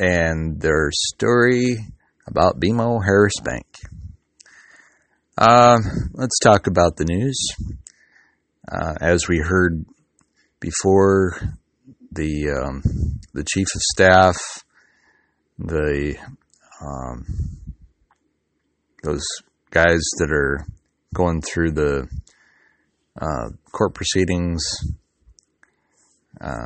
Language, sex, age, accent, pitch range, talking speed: English, male, 30-49, American, 75-90 Hz, 85 wpm